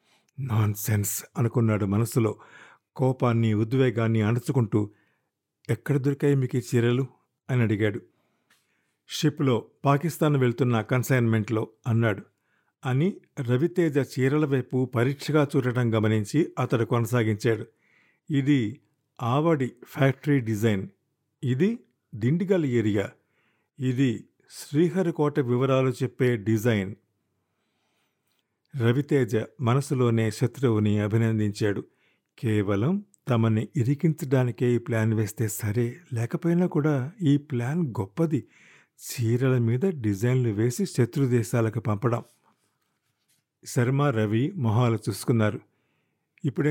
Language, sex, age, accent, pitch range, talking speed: Telugu, male, 50-69, native, 115-145 Hz, 85 wpm